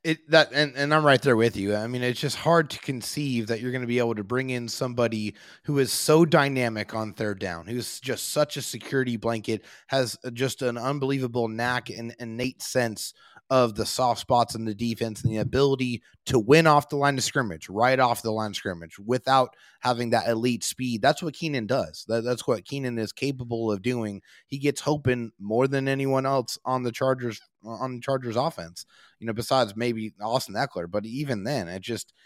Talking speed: 210 wpm